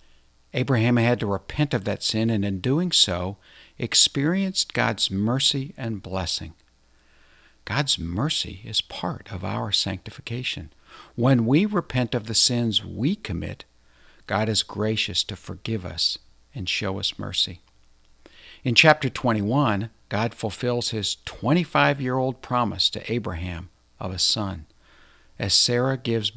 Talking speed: 130 wpm